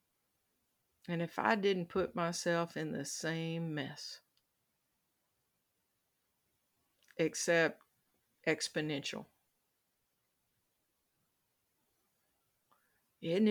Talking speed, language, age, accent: 60 wpm, English, 50-69, American